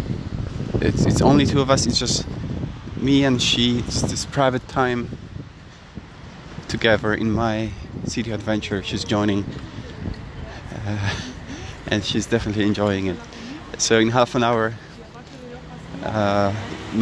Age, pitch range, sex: 30-49, 100-115 Hz, male